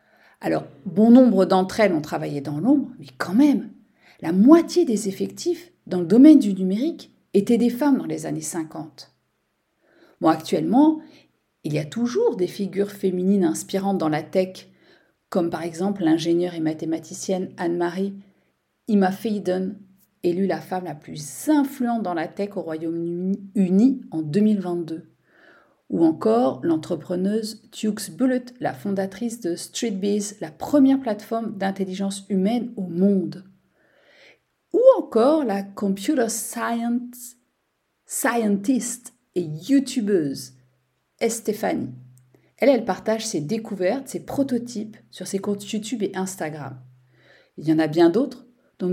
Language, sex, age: French, female, 40-59